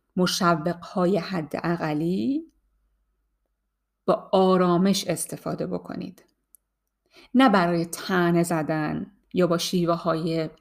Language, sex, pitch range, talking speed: Persian, female, 170-230 Hz, 85 wpm